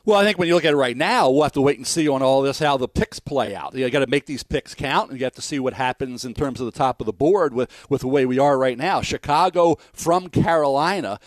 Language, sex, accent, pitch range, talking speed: English, male, American, 140-190 Hz, 305 wpm